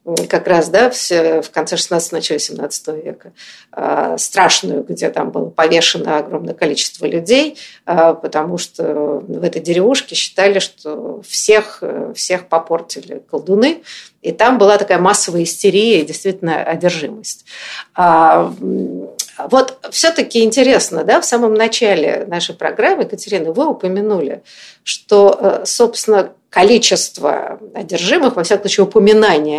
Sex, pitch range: female, 175-255 Hz